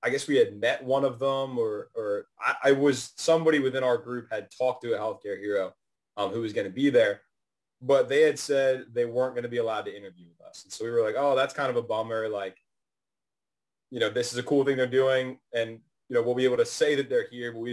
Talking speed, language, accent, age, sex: 265 wpm, English, American, 20-39, male